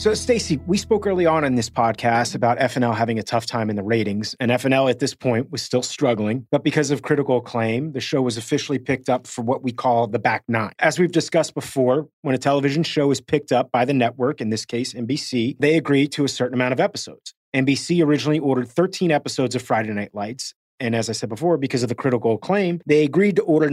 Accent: American